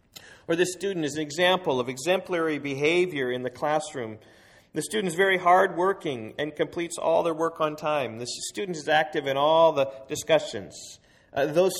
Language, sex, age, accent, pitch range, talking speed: English, male, 40-59, American, 120-175 Hz, 175 wpm